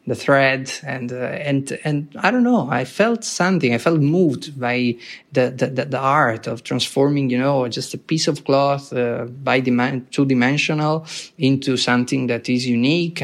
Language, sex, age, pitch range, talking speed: English, male, 20-39, 125-150 Hz, 175 wpm